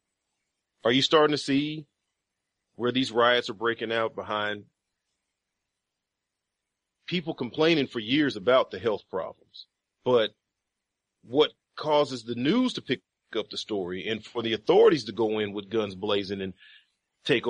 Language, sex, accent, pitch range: English, male, American, 105-160 Hz